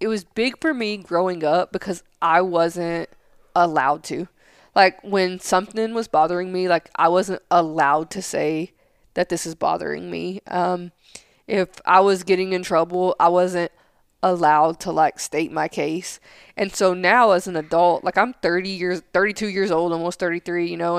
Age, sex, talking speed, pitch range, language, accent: 20-39, female, 175 wpm, 170-190 Hz, English, American